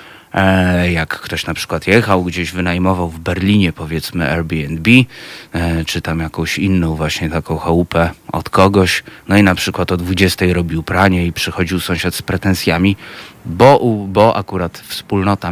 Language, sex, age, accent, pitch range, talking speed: Polish, male, 30-49, native, 90-115 Hz, 145 wpm